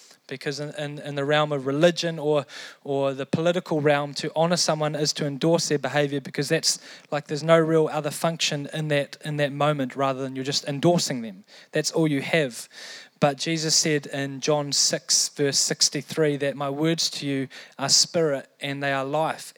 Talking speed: 195 wpm